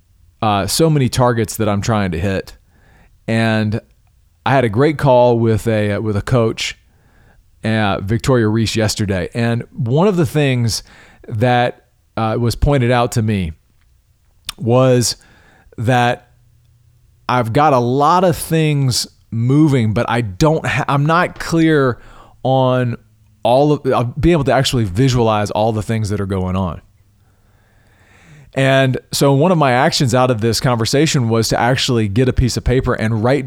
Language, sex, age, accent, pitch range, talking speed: English, male, 40-59, American, 110-140 Hz, 160 wpm